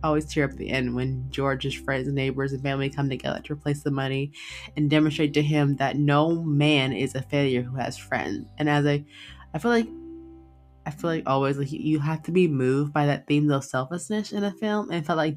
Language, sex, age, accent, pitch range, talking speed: English, female, 20-39, American, 130-160 Hz, 225 wpm